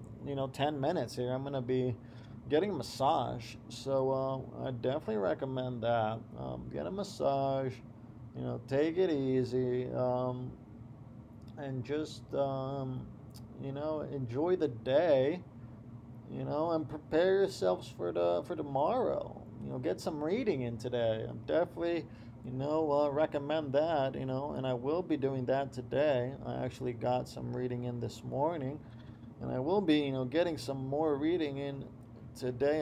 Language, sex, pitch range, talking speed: English, male, 120-155 Hz, 160 wpm